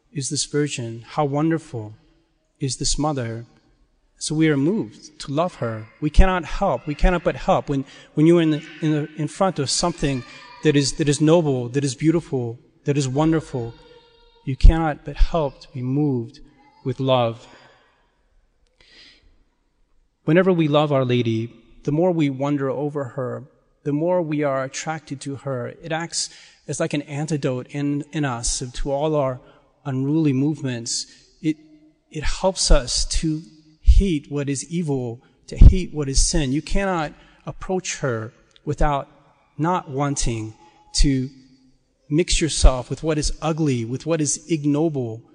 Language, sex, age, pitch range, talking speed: English, male, 40-59, 135-160 Hz, 155 wpm